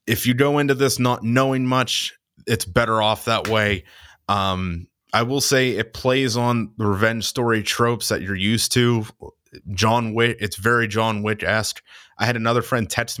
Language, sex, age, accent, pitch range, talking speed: English, male, 20-39, American, 100-125 Hz, 180 wpm